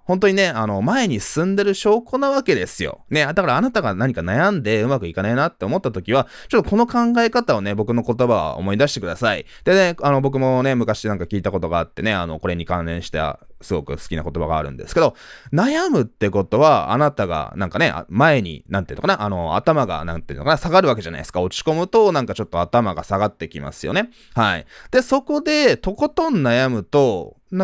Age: 20-39